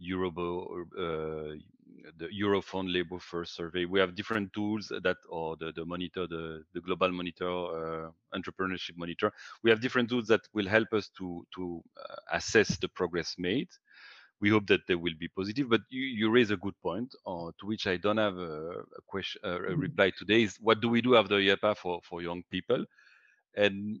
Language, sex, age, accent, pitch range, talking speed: English, male, 40-59, French, 90-110 Hz, 200 wpm